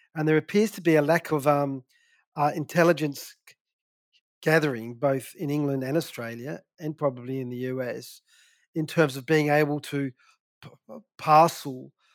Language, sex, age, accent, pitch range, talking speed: English, male, 40-59, Australian, 135-155 Hz, 145 wpm